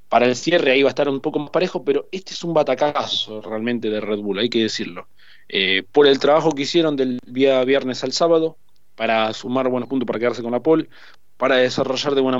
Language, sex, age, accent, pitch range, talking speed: Spanish, male, 20-39, Argentinian, 115-145 Hz, 225 wpm